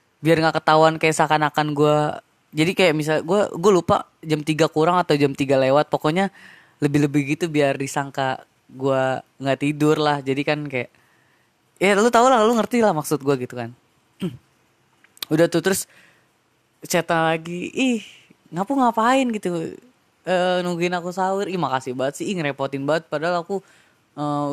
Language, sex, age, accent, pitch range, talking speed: Indonesian, female, 20-39, native, 145-185 Hz, 155 wpm